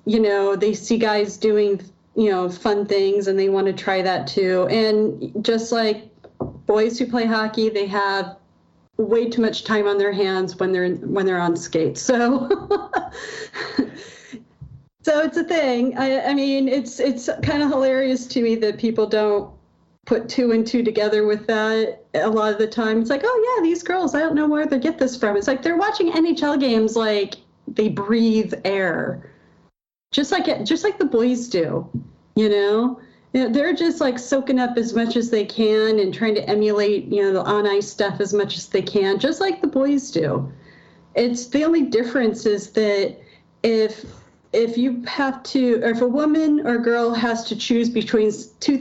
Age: 40-59